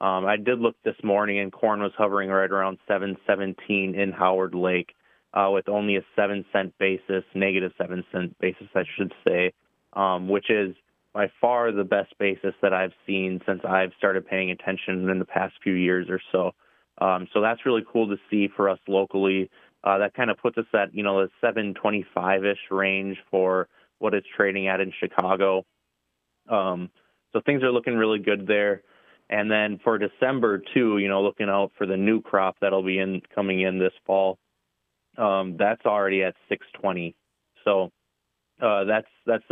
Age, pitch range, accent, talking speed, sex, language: 20-39, 95-105 Hz, American, 185 wpm, male, English